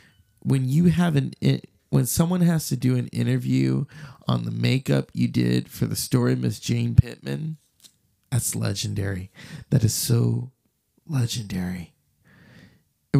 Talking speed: 135 wpm